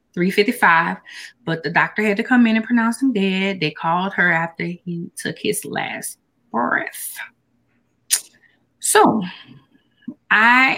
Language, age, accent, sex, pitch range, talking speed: English, 20-39, American, female, 185-250 Hz, 130 wpm